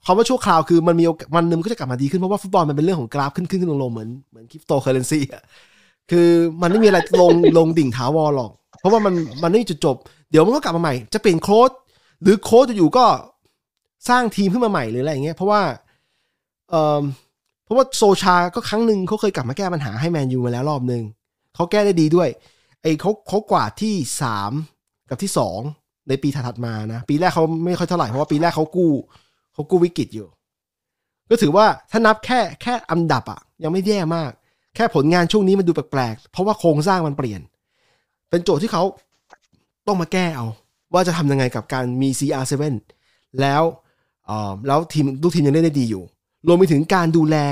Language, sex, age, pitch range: Thai, male, 20-39, 140-185 Hz